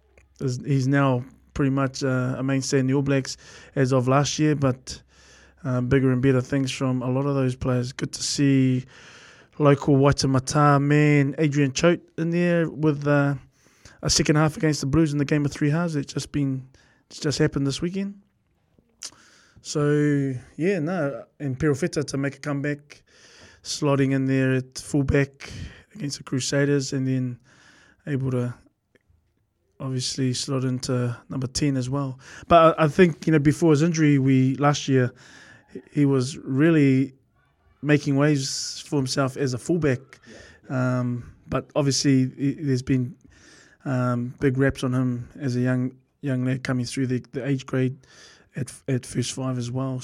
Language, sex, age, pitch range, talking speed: English, male, 20-39, 130-150 Hz, 165 wpm